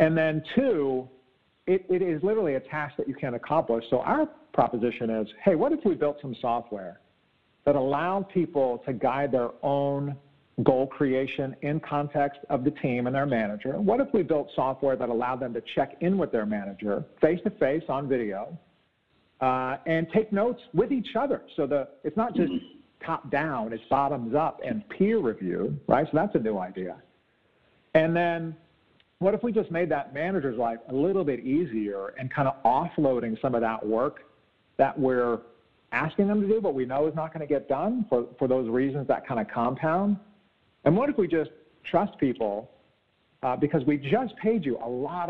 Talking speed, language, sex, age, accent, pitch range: 190 wpm, English, male, 50-69, American, 130-195 Hz